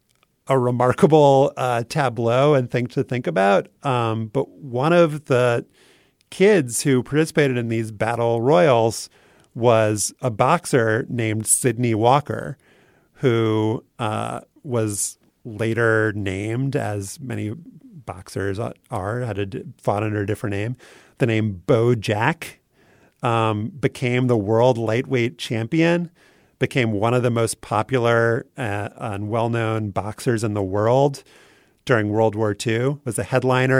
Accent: American